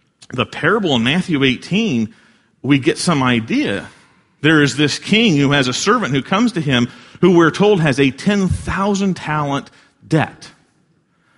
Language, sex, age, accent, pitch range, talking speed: English, male, 40-59, American, 140-195 Hz, 150 wpm